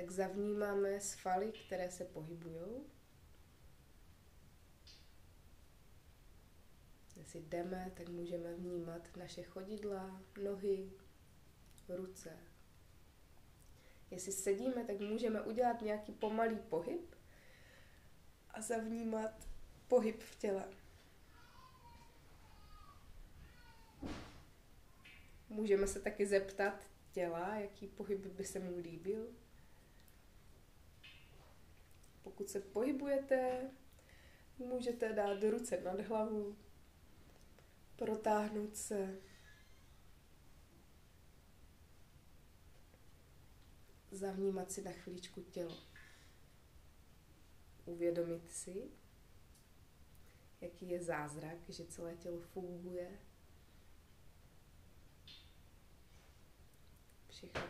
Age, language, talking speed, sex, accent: 20-39, Czech, 70 wpm, female, native